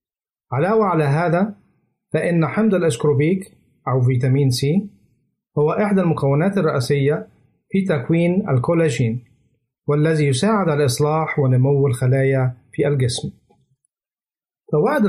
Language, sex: Arabic, male